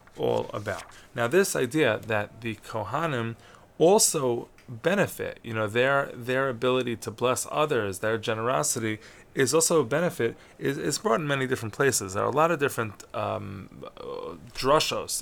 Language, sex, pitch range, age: English, male, 115-140 Hz, 20-39